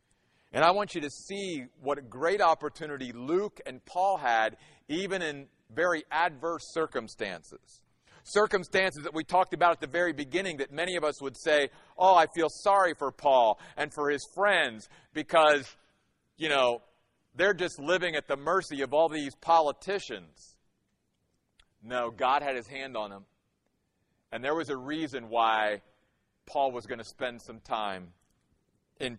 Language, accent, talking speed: English, American, 160 wpm